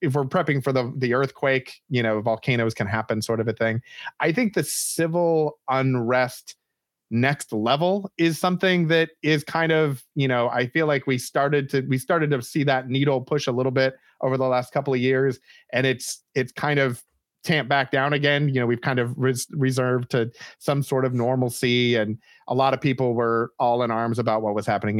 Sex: male